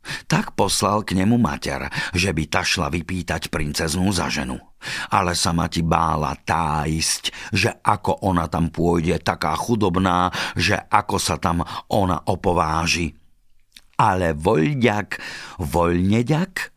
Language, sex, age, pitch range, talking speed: Slovak, male, 50-69, 80-100 Hz, 120 wpm